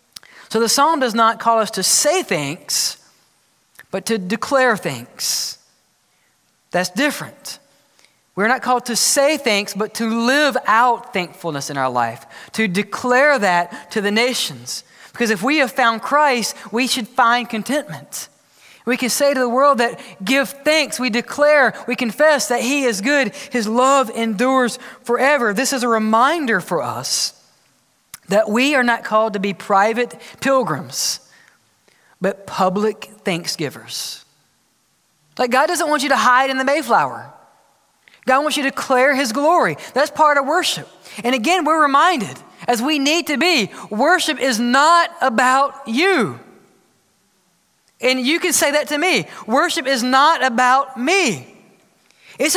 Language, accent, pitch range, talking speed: English, American, 220-285 Hz, 150 wpm